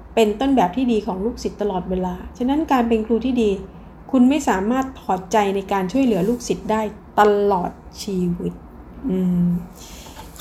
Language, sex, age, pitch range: Thai, female, 20-39, 190-235 Hz